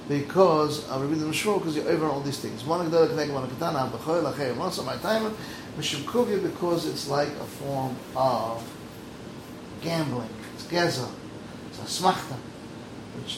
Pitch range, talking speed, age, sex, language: 135-165 Hz, 100 wpm, 30-49, male, English